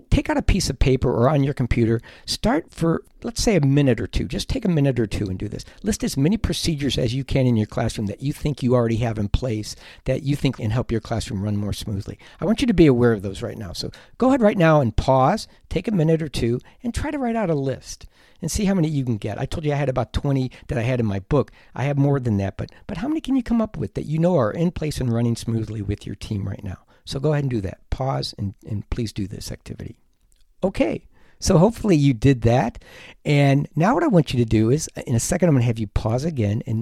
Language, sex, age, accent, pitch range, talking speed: English, male, 60-79, American, 115-150 Hz, 280 wpm